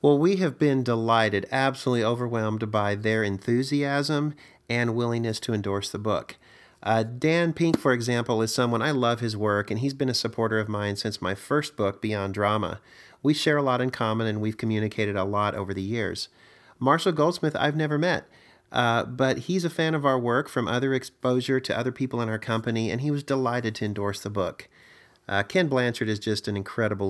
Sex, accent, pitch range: male, American, 105-125 Hz